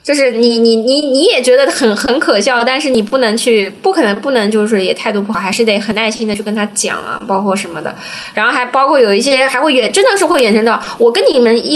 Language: Chinese